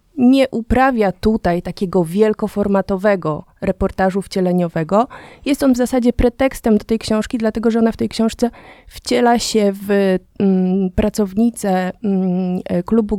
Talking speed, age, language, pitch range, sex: 125 wpm, 30-49, Polish, 185-220 Hz, female